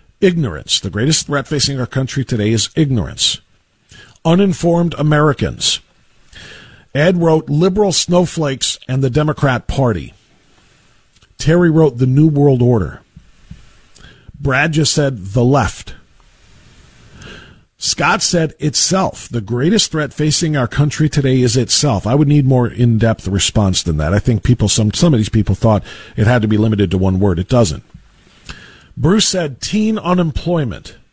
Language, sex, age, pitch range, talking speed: English, male, 50-69, 110-155 Hz, 145 wpm